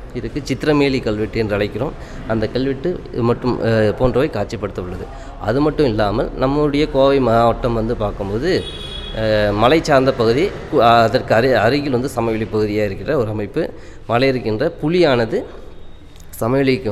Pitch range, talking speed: 105-130 Hz, 115 wpm